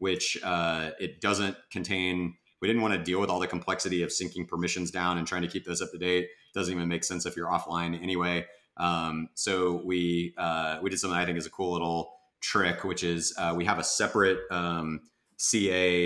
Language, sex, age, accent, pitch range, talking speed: English, male, 30-49, American, 85-90 Hz, 215 wpm